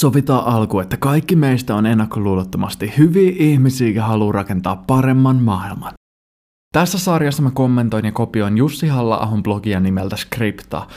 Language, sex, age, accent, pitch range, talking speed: Finnish, male, 20-39, native, 110-145 Hz, 135 wpm